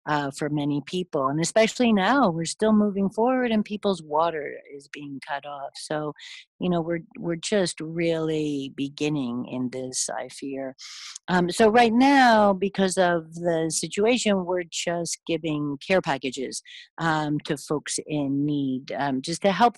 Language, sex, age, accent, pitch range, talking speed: English, female, 50-69, American, 155-215 Hz, 160 wpm